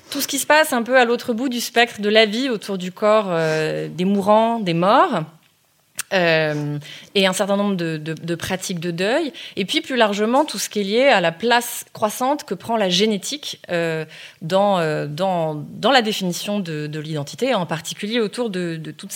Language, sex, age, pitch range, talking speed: French, female, 30-49, 180-240 Hz, 210 wpm